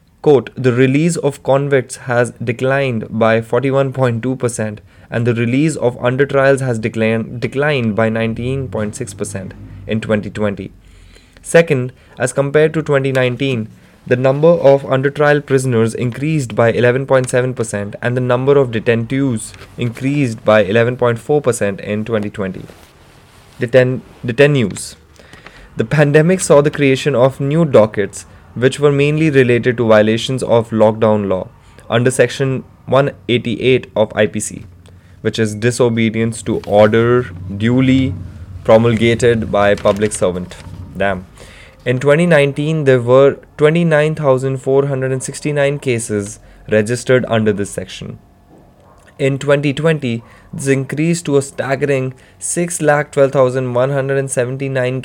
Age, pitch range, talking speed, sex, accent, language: 20-39, 110-135 Hz, 105 wpm, male, Indian, English